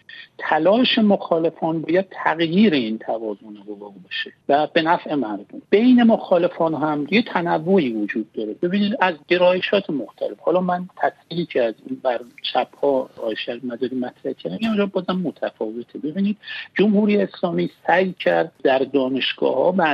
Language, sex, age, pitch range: Persian, male, 60-79, 140-200 Hz